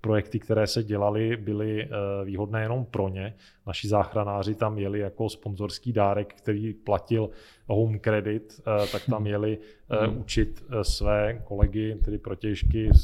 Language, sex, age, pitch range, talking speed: Czech, male, 20-39, 100-110 Hz, 130 wpm